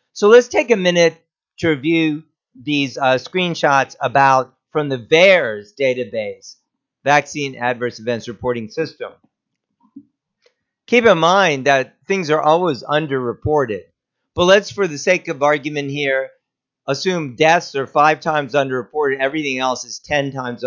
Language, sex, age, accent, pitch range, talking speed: English, male, 50-69, American, 135-180 Hz, 135 wpm